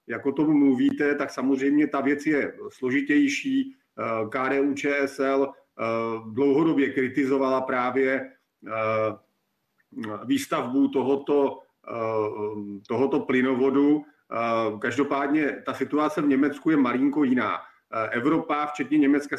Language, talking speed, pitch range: Czech, 95 wpm, 130-155 Hz